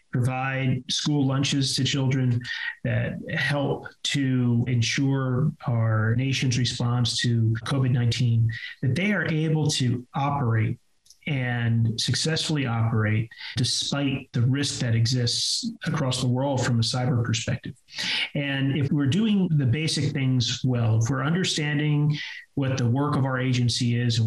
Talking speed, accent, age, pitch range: 135 wpm, American, 30-49, 120-145 Hz